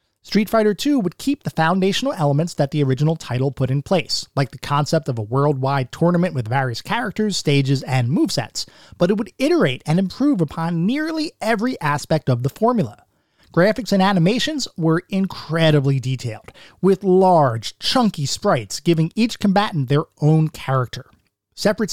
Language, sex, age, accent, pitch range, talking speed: English, male, 30-49, American, 140-200 Hz, 160 wpm